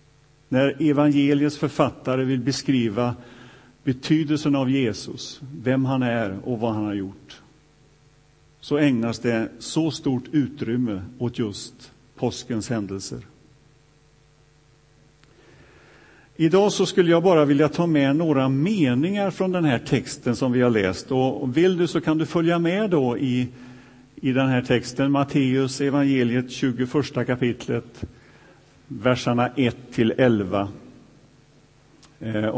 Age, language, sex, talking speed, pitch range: 50-69, Swedish, male, 115 wpm, 125-150 Hz